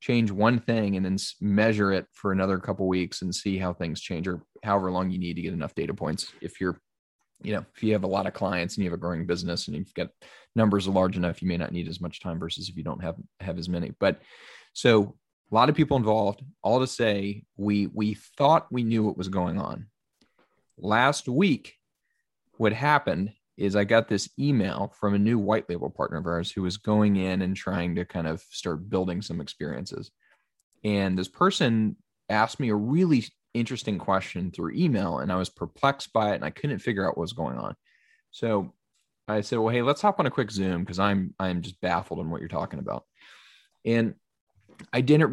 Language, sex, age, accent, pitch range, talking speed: English, male, 20-39, American, 90-110 Hz, 215 wpm